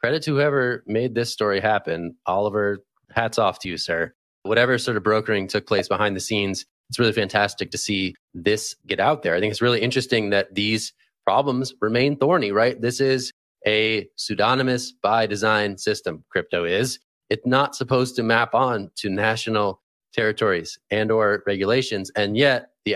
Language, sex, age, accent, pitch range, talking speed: English, male, 20-39, American, 105-130 Hz, 175 wpm